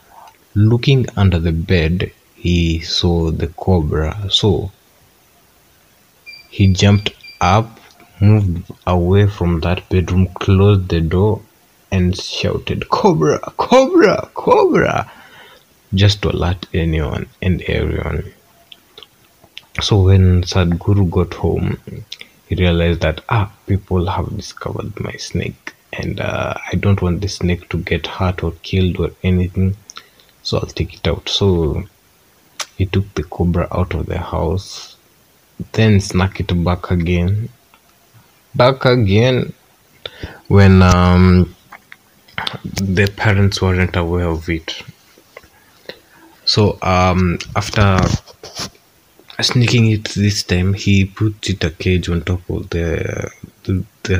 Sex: male